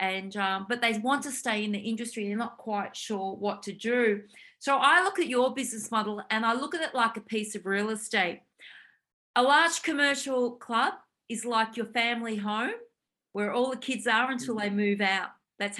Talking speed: 200 wpm